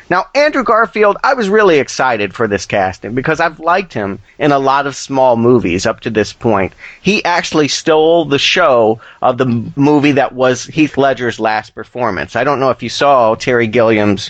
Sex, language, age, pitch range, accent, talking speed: male, English, 30-49, 120-155 Hz, American, 195 wpm